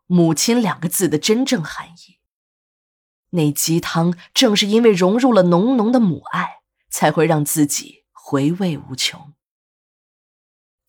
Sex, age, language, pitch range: female, 20-39, Chinese, 155-215 Hz